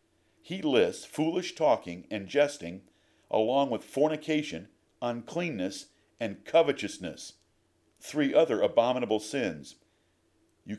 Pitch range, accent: 100-140 Hz, American